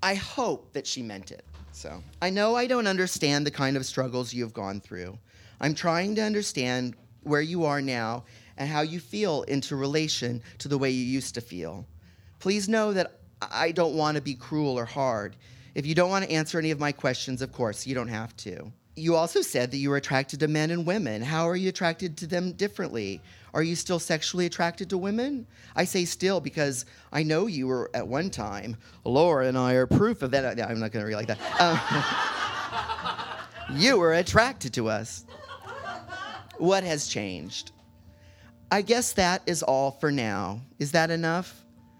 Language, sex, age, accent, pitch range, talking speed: English, male, 40-59, American, 115-165 Hz, 195 wpm